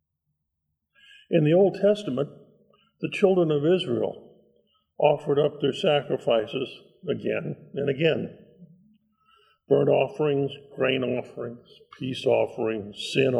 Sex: male